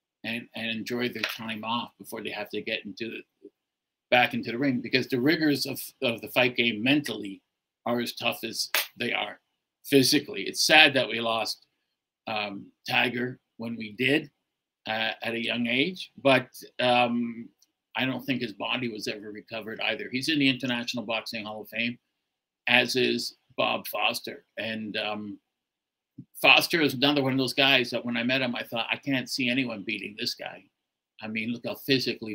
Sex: male